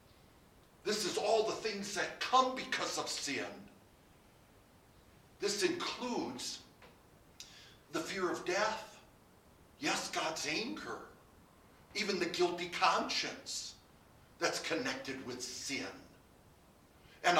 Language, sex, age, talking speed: English, male, 60-79, 95 wpm